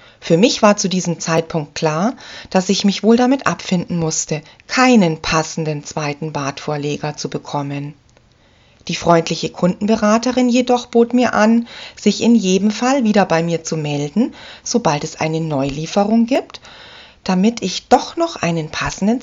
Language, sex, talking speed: German, female, 145 wpm